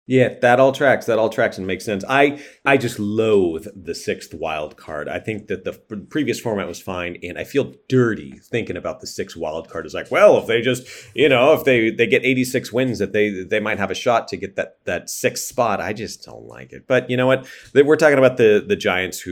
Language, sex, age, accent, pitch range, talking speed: English, male, 30-49, American, 100-130 Hz, 250 wpm